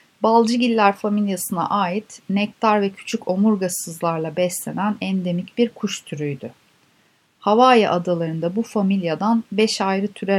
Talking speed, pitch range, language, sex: 110 wpm, 175-230 Hz, Turkish, female